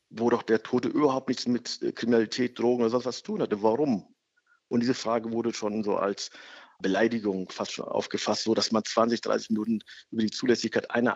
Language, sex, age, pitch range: German, male, 50-69, 105-120 Hz